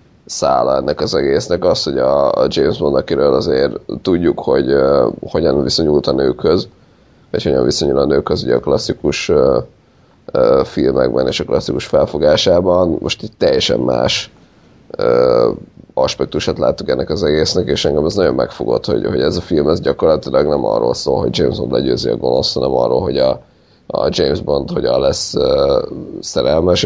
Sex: male